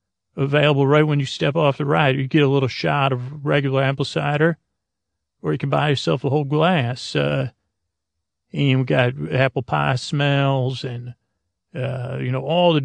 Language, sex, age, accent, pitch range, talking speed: English, male, 40-59, American, 125-145 Hz, 180 wpm